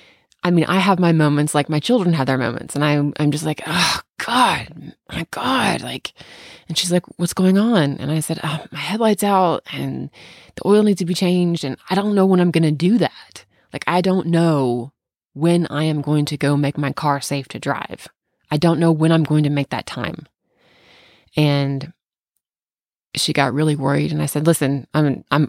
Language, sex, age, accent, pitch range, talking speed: English, female, 20-39, American, 140-165 Hz, 205 wpm